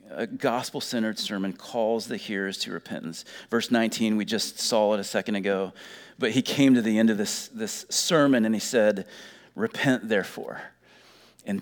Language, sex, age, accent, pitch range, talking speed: English, male, 40-59, American, 110-140 Hz, 170 wpm